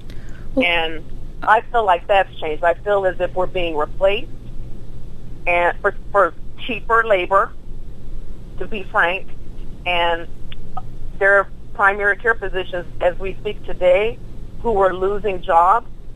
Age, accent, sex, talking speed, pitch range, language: 40-59, American, female, 130 wpm, 175-225 Hz, English